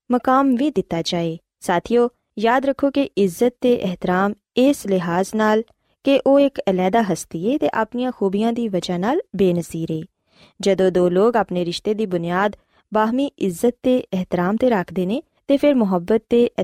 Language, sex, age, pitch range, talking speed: Punjabi, female, 20-39, 180-240 Hz, 160 wpm